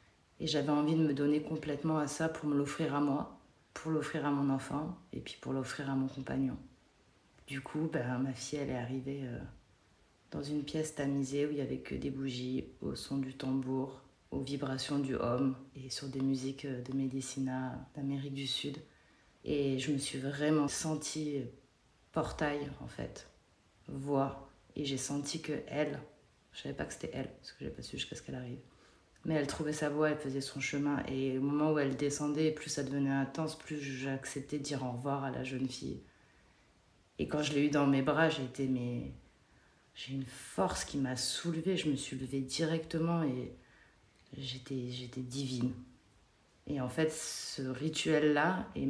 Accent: French